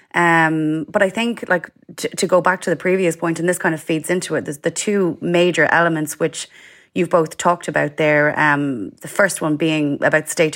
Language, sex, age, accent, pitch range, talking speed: English, female, 30-49, Irish, 155-175 Hz, 215 wpm